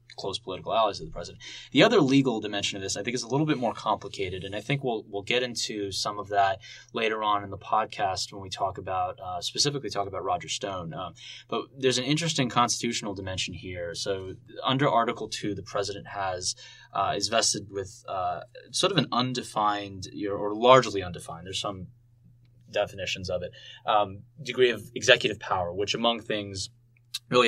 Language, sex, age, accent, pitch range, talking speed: English, male, 10-29, American, 100-125 Hz, 190 wpm